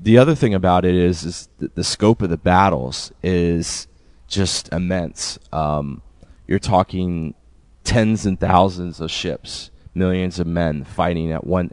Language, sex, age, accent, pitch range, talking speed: English, male, 30-49, American, 80-90 Hz, 155 wpm